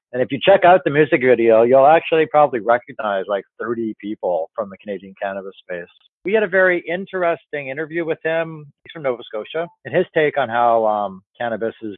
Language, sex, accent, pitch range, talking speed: English, male, American, 105-135 Hz, 200 wpm